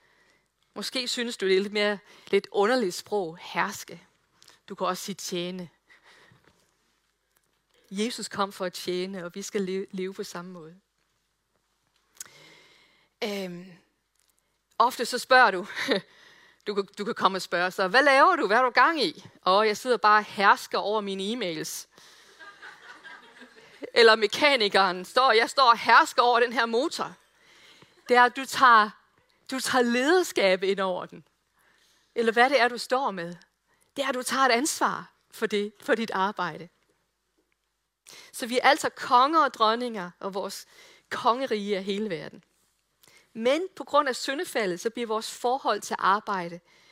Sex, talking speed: female, 155 wpm